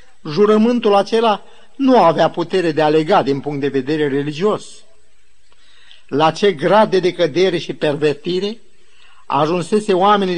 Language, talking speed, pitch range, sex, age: Romanian, 125 wpm, 165-215 Hz, male, 50-69